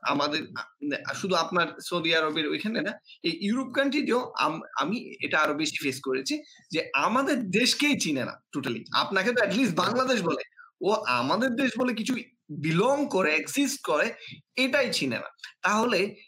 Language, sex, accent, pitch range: Bengali, male, native, 155-240 Hz